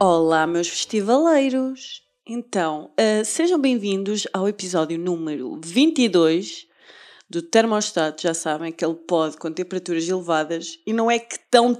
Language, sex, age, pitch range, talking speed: Portuguese, female, 20-39, 190-270 Hz, 130 wpm